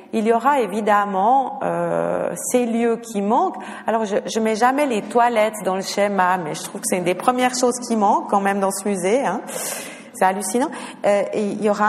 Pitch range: 200-240 Hz